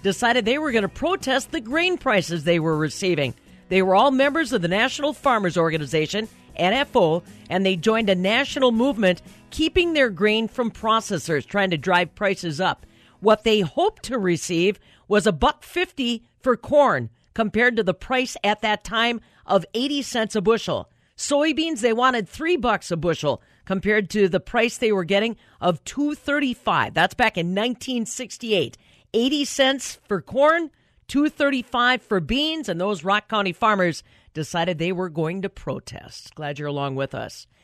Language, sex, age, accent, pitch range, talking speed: English, female, 40-59, American, 180-245 Hz, 165 wpm